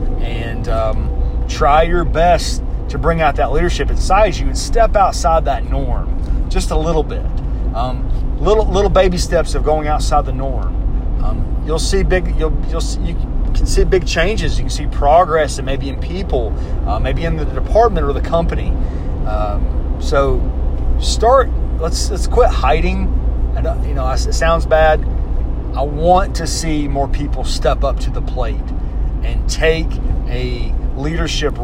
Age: 30-49